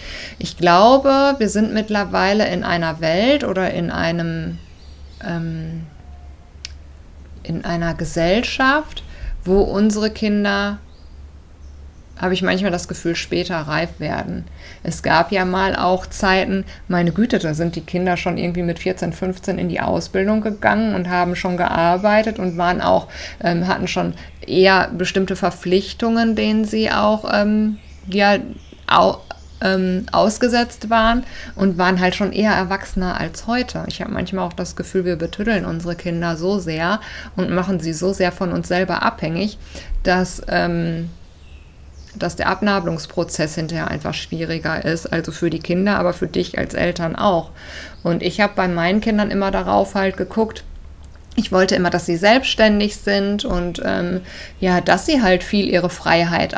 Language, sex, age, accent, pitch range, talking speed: German, female, 50-69, German, 165-205 Hz, 150 wpm